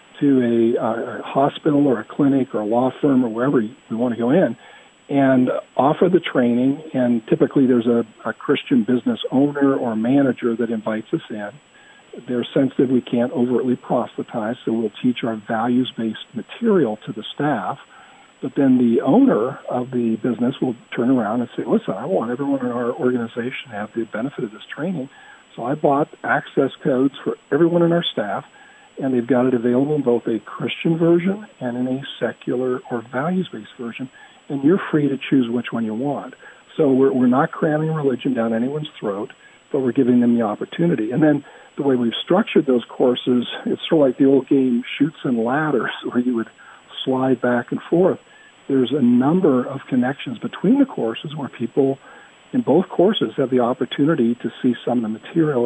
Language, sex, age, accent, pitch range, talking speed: English, male, 50-69, American, 120-140 Hz, 190 wpm